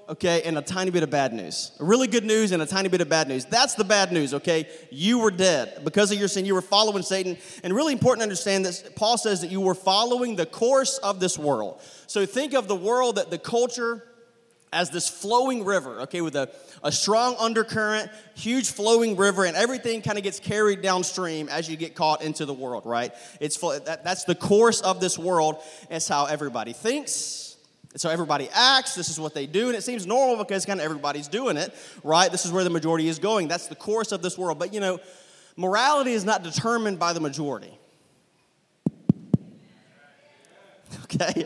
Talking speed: 205 wpm